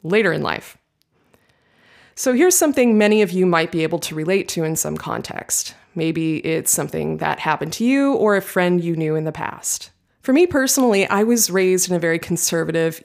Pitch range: 165-210 Hz